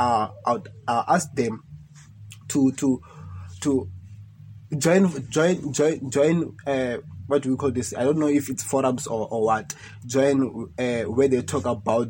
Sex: male